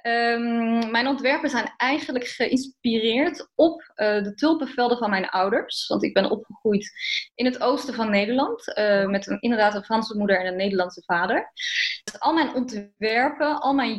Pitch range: 200-245 Hz